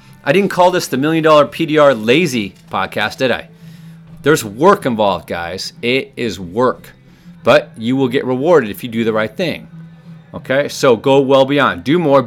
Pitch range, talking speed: 130-165 Hz, 180 wpm